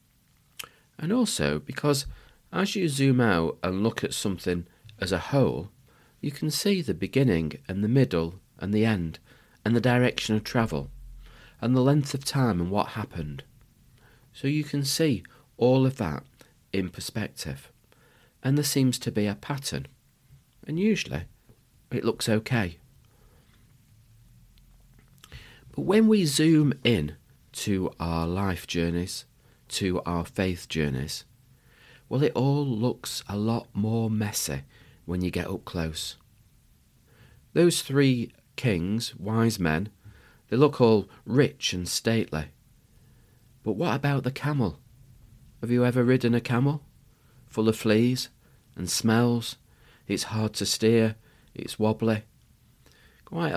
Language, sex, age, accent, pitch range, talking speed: English, male, 40-59, British, 95-130 Hz, 135 wpm